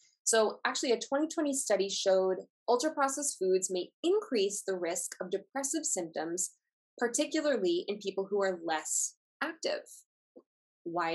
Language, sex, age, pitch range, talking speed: English, female, 20-39, 185-245 Hz, 130 wpm